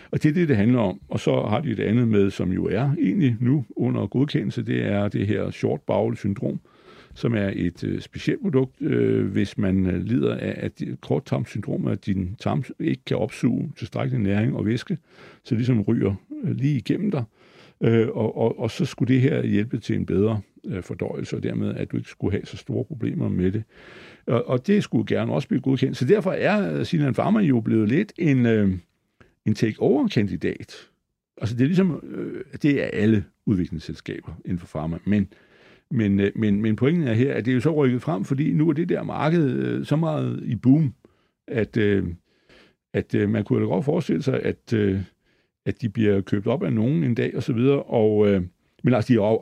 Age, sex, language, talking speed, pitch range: 60-79, male, Danish, 200 wpm, 100-135 Hz